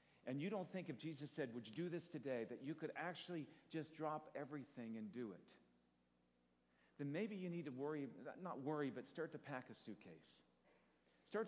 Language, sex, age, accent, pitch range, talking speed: English, male, 50-69, American, 130-185 Hz, 195 wpm